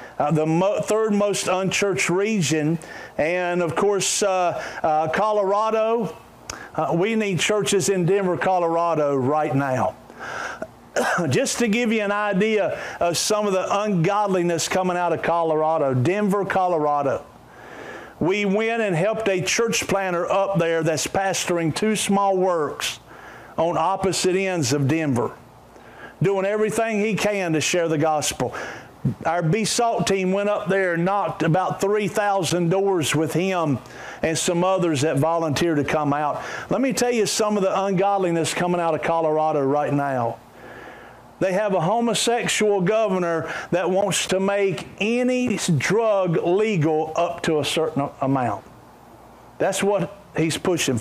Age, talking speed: 50-69, 145 wpm